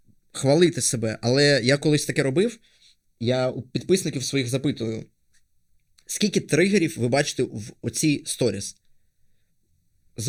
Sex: male